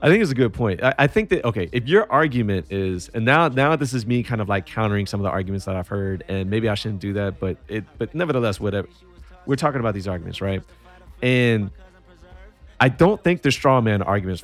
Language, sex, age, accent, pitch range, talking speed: English, male, 30-49, American, 95-125 Hz, 235 wpm